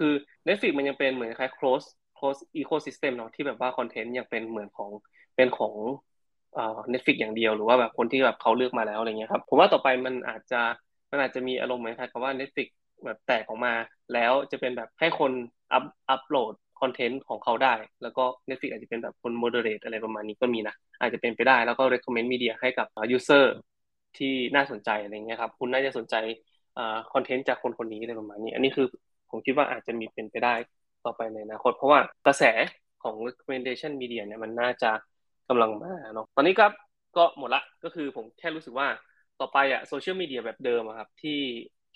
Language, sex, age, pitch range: Thai, male, 20-39, 115-135 Hz